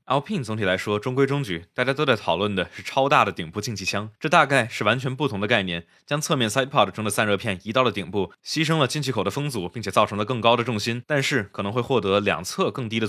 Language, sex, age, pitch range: Chinese, male, 20-39, 100-130 Hz